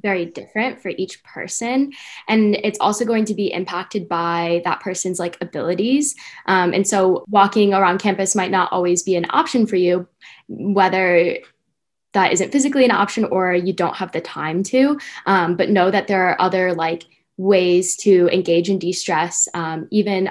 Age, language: 10-29, English